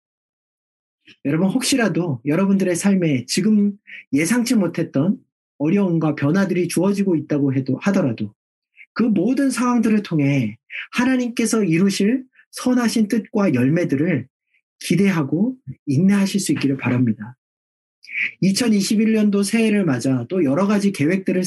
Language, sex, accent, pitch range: Korean, male, native, 140-210 Hz